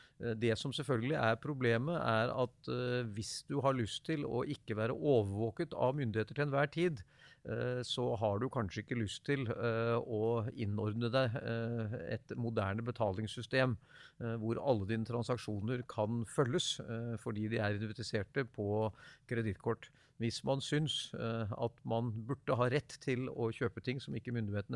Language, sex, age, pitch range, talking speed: English, male, 50-69, 110-130 Hz, 150 wpm